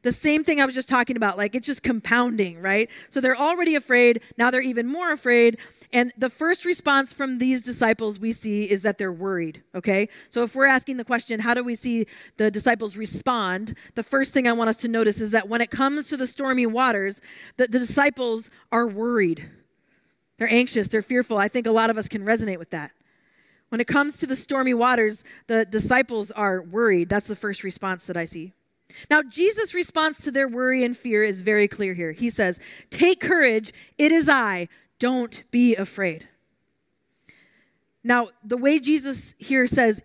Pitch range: 220-280 Hz